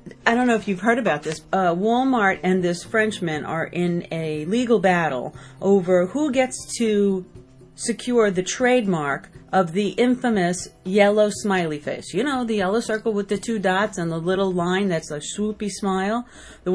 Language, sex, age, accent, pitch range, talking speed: English, female, 40-59, American, 175-220 Hz, 175 wpm